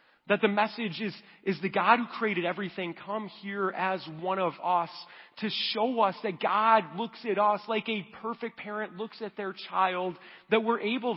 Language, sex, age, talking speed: English, male, 40-59, 190 wpm